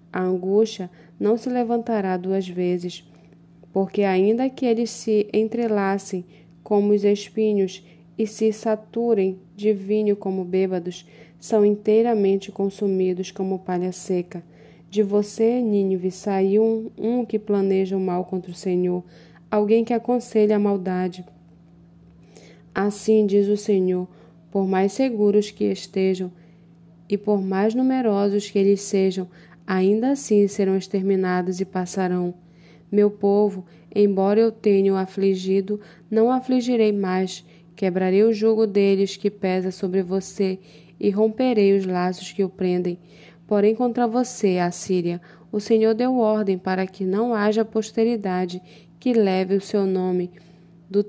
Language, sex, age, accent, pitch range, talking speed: Portuguese, female, 20-39, Brazilian, 185-215 Hz, 135 wpm